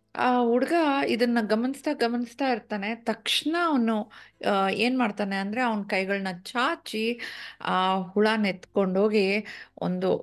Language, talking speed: Kannada, 105 wpm